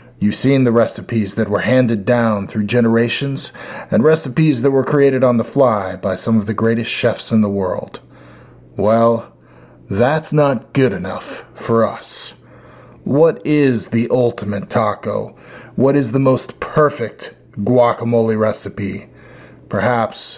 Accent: American